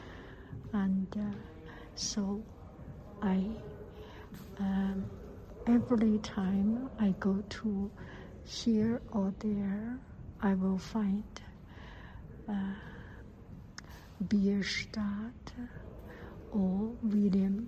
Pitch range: 190-215 Hz